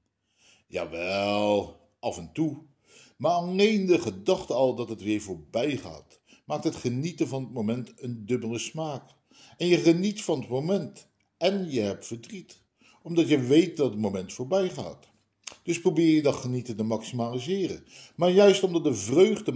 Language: Dutch